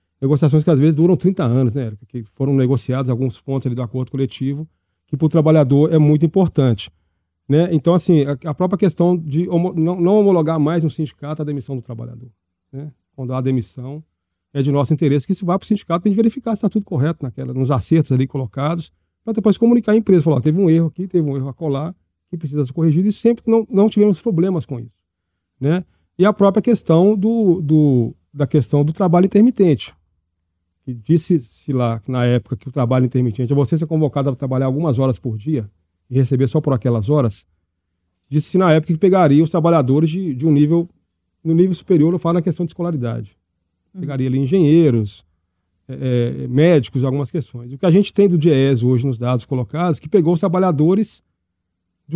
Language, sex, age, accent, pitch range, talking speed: Portuguese, male, 40-59, Brazilian, 125-175 Hz, 205 wpm